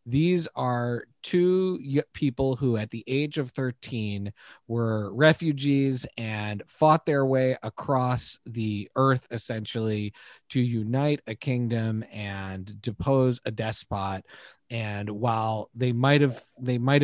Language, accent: English, American